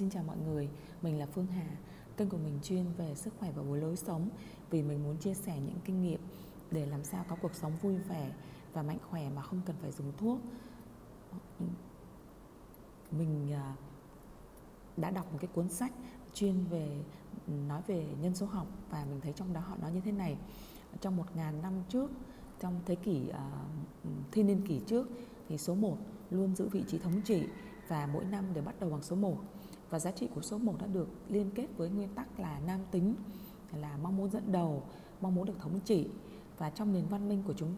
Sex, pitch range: female, 160-200 Hz